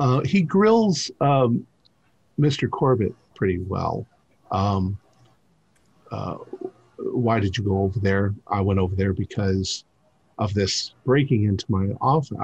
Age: 50-69